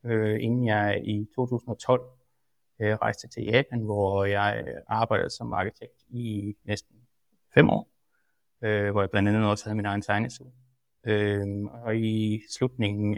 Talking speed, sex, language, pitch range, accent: 145 wpm, male, Danish, 105-120 Hz, native